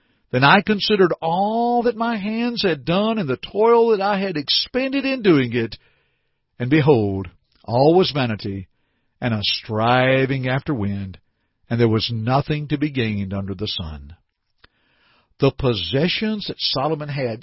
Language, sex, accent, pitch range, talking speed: English, male, American, 115-170 Hz, 150 wpm